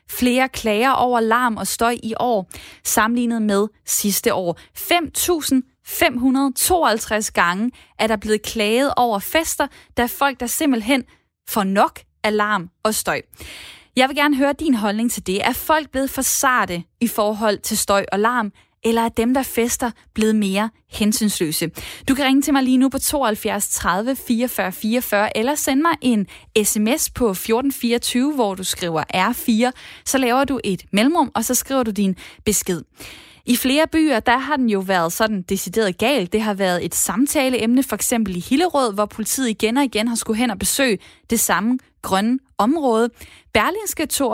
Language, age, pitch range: Danish, 20-39, 210-265 Hz